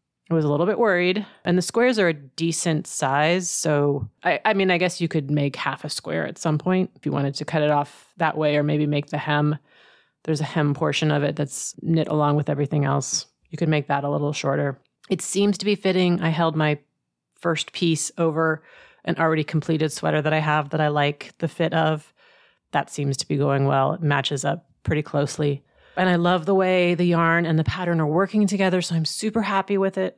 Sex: female